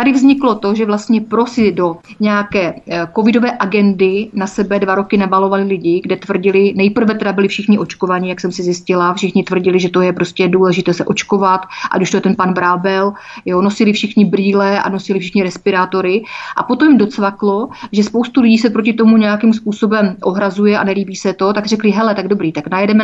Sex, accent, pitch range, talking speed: female, native, 190-215 Hz, 200 wpm